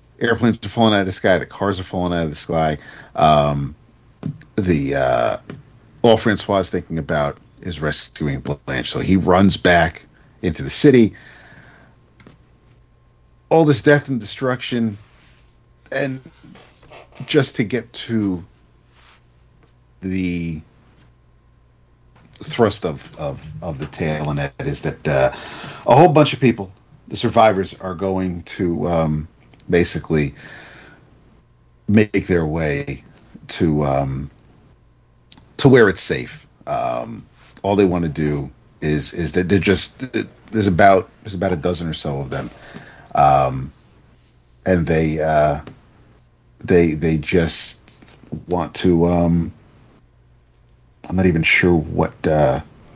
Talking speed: 125 wpm